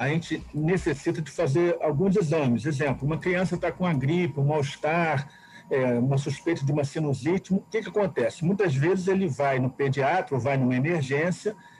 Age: 50-69